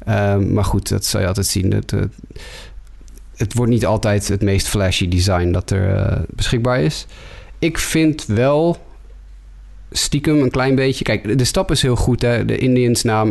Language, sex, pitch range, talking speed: Dutch, male, 100-125 Hz, 180 wpm